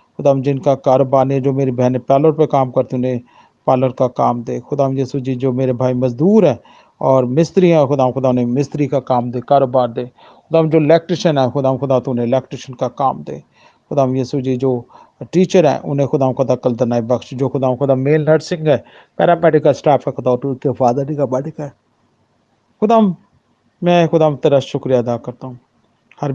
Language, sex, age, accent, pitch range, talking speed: Hindi, male, 40-59, native, 120-140 Hz, 185 wpm